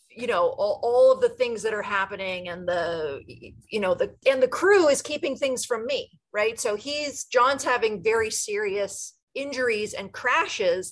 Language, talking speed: English, 180 wpm